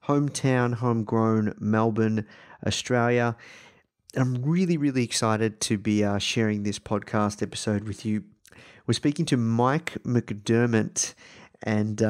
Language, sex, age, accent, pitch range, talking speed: English, male, 30-49, Australian, 105-125 Hz, 115 wpm